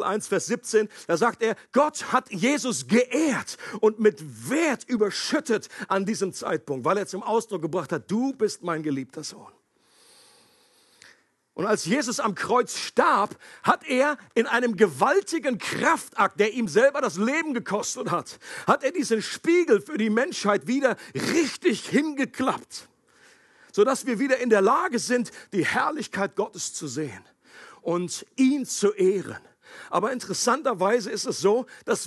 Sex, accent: male, German